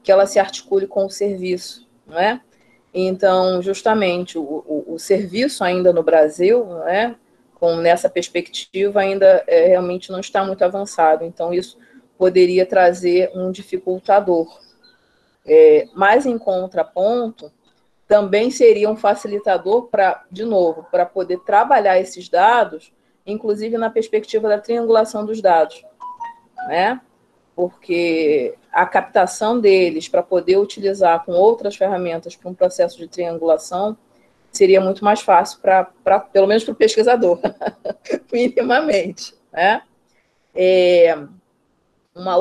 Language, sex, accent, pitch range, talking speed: Portuguese, female, Brazilian, 175-215 Hz, 125 wpm